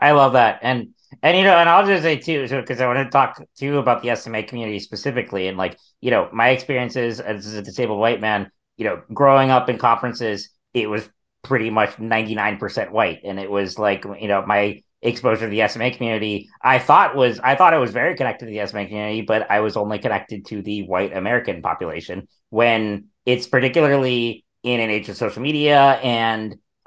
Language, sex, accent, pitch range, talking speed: English, male, American, 105-130 Hz, 205 wpm